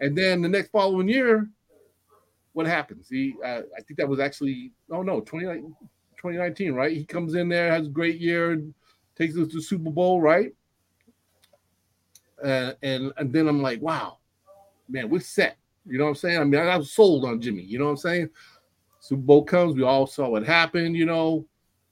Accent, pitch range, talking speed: American, 120-165 Hz, 195 wpm